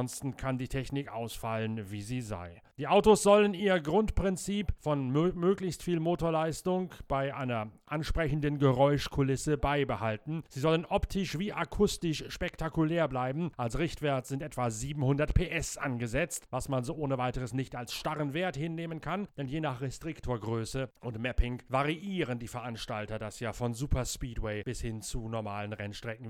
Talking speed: 155 wpm